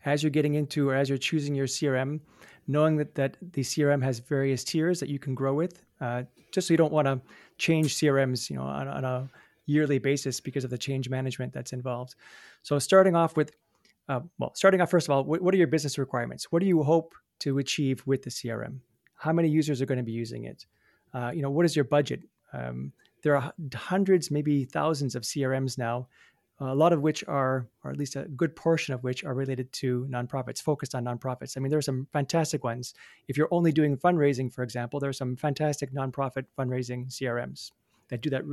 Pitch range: 130-155 Hz